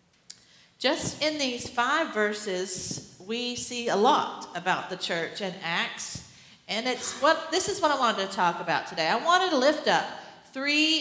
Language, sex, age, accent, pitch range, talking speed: English, female, 50-69, American, 205-265 Hz, 175 wpm